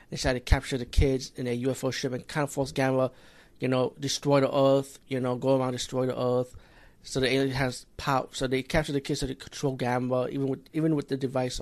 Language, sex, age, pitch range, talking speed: English, male, 20-39, 130-145 Hz, 250 wpm